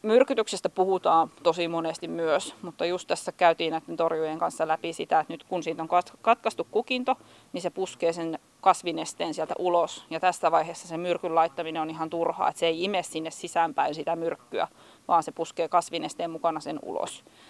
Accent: native